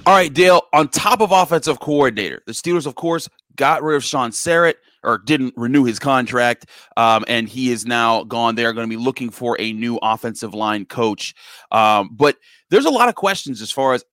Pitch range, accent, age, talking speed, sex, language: 115-145 Hz, American, 30-49, 210 wpm, male, English